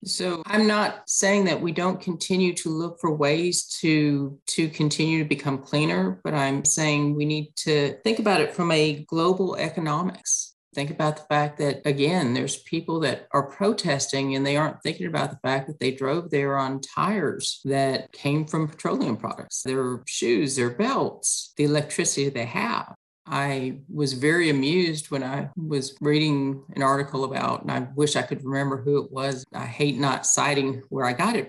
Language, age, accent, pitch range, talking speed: English, 40-59, American, 135-160 Hz, 185 wpm